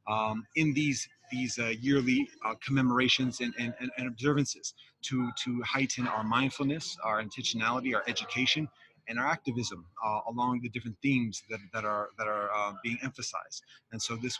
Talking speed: 170 wpm